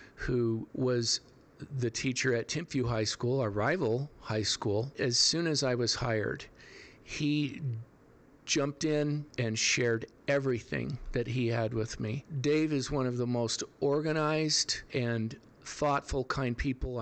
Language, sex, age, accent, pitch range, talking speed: English, male, 50-69, American, 120-135 Hz, 140 wpm